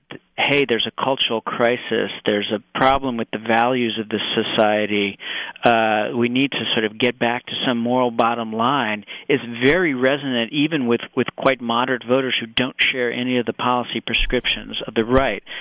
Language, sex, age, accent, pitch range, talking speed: English, male, 50-69, American, 115-130 Hz, 180 wpm